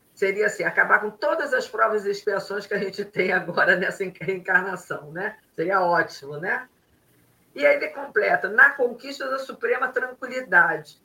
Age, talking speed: 50-69, 155 wpm